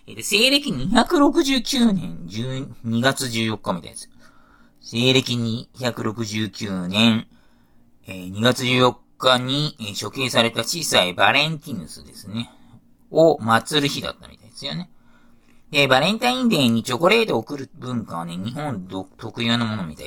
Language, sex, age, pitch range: Japanese, male, 40-59, 95-145 Hz